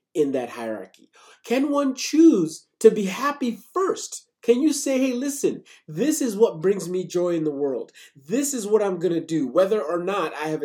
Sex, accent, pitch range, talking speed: male, American, 175-265 Hz, 190 wpm